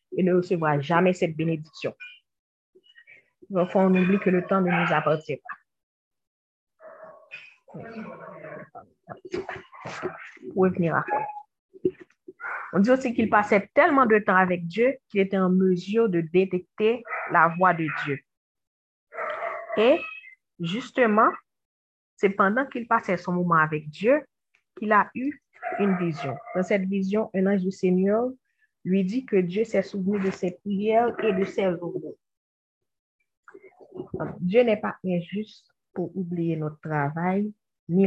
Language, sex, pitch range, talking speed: French, female, 170-220 Hz, 130 wpm